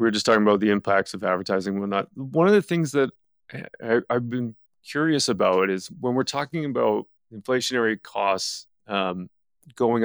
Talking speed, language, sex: 180 wpm, English, male